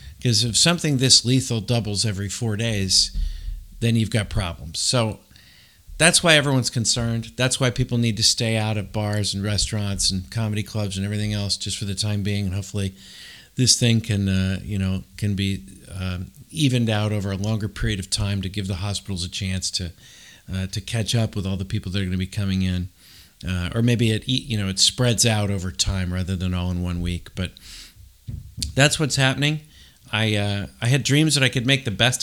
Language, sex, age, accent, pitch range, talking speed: English, male, 50-69, American, 95-120 Hz, 210 wpm